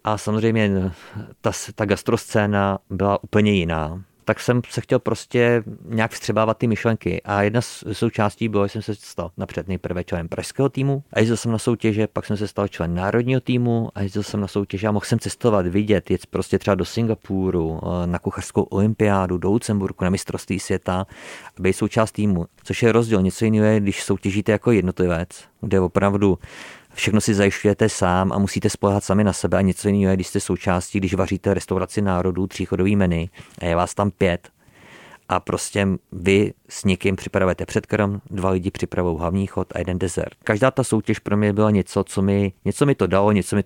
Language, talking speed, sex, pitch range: Czech, 190 wpm, male, 95-110 Hz